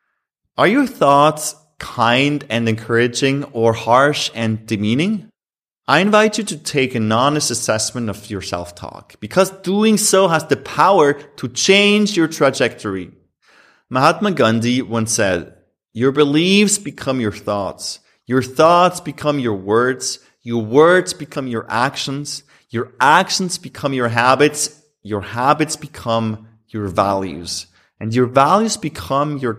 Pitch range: 115-170 Hz